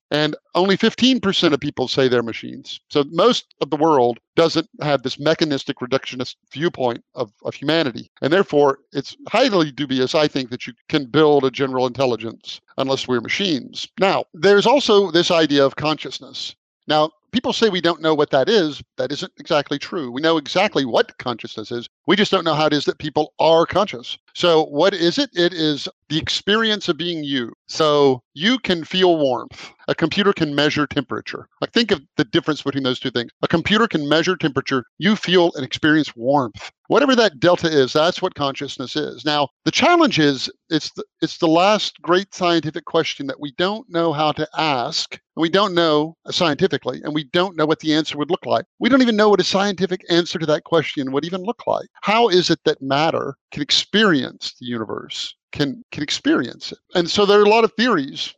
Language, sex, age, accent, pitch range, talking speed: English, male, 50-69, American, 140-185 Hz, 195 wpm